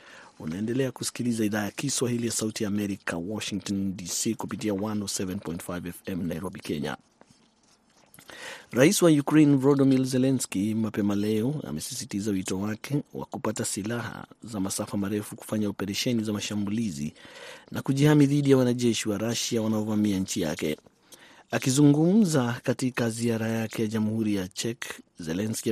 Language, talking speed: Swahili, 130 wpm